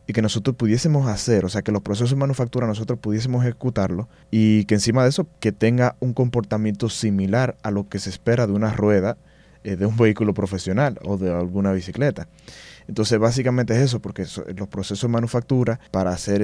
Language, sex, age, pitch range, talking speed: Spanish, male, 20-39, 100-125 Hz, 195 wpm